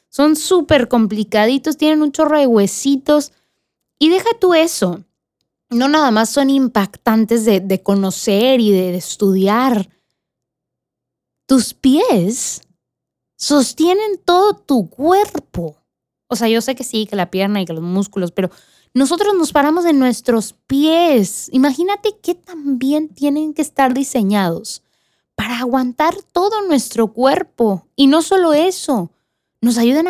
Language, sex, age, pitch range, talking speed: Spanish, female, 20-39, 195-290 Hz, 135 wpm